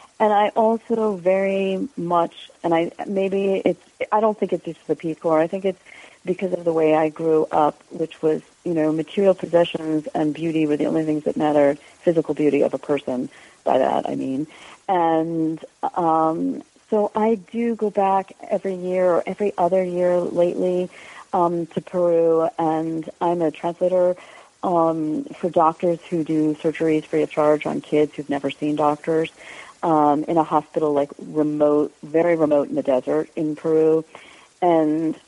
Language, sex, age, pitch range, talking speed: English, female, 40-59, 155-180 Hz, 170 wpm